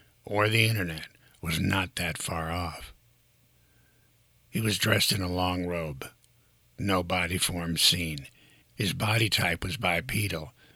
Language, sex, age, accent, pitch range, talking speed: English, male, 60-79, American, 85-105 Hz, 135 wpm